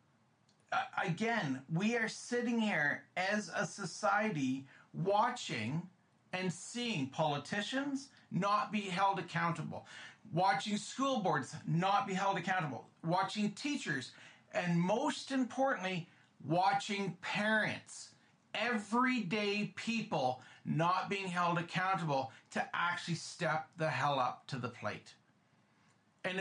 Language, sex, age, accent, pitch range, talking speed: English, male, 40-59, American, 175-225 Hz, 105 wpm